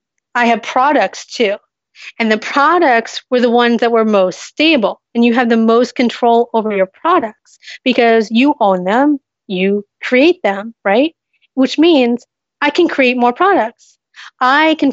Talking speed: 160 wpm